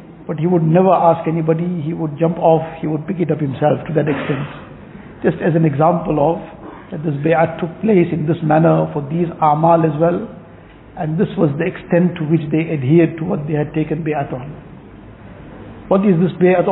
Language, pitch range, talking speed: English, 155-175 Hz, 205 wpm